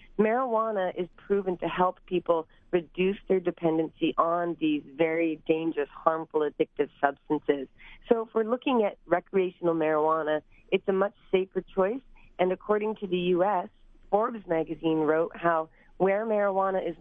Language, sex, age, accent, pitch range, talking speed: English, female, 30-49, American, 160-200 Hz, 140 wpm